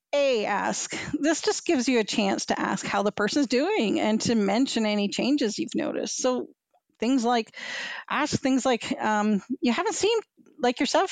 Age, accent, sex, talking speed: 40-59, American, female, 175 wpm